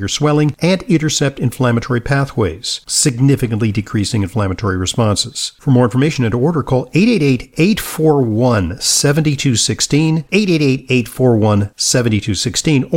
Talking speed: 85 wpm